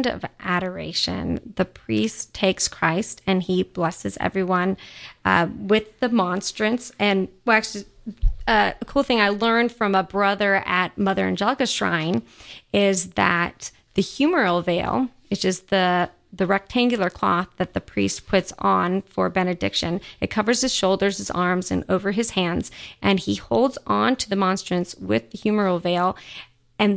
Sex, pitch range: female, 185-220 Hz